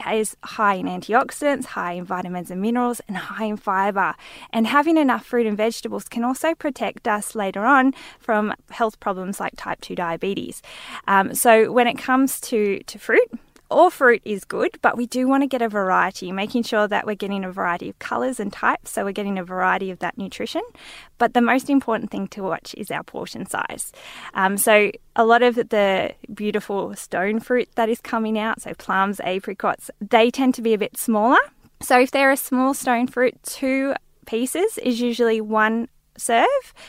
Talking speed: 190 wpm